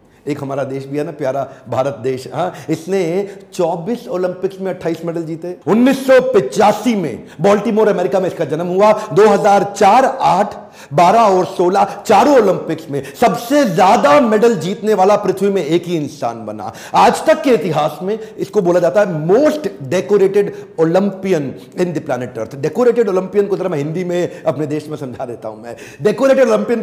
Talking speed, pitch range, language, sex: 165 wpm, 160-220 Hz, Hindi, male